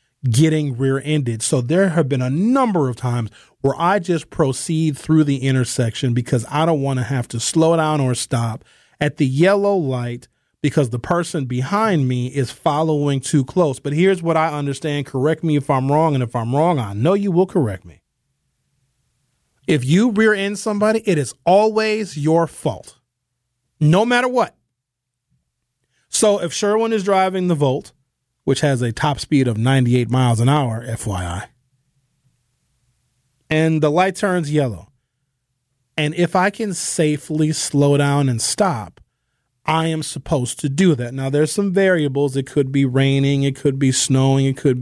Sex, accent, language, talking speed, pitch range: male, American, English, 170 wpm, 130-165 Hz